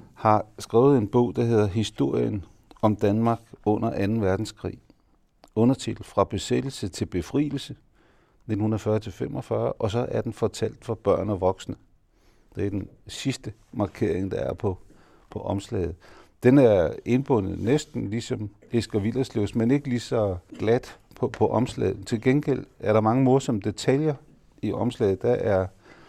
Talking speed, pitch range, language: 150 wpm, 105-130 Hz, Danish